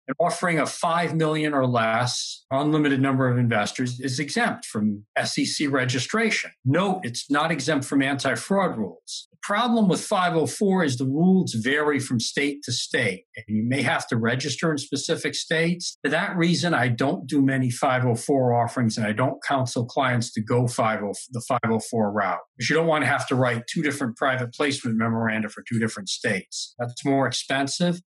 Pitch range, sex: 120-165 Hz, male